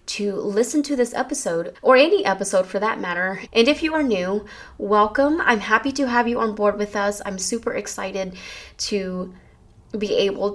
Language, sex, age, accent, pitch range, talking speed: English, female, 20-39, American, 195-235 Hz, 180 wpm